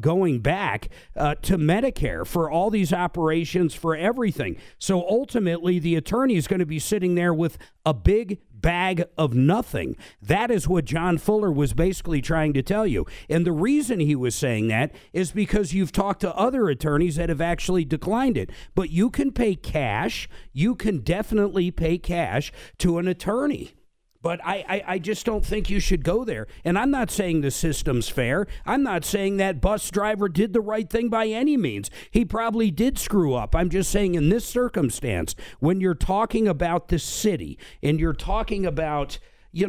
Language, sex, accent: English, male, American